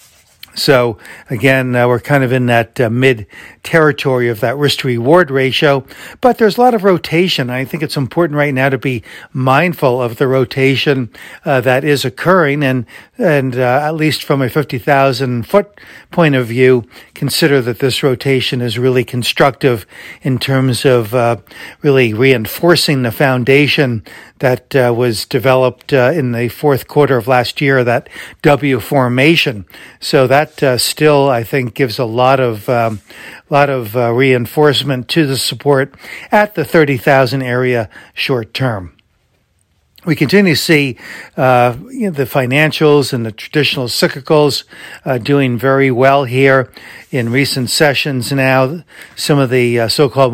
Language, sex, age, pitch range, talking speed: English, male, 60-79, 125-150 Hz, 155 wpm